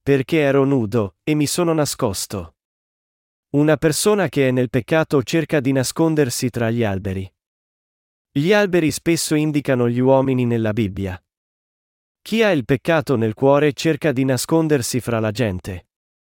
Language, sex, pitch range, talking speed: Italian, male, 115-155 Hz, 145 wpm